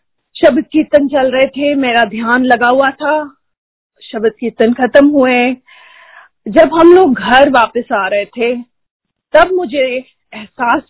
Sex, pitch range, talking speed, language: female, 240-290 Hz, 140 wpm, Hindi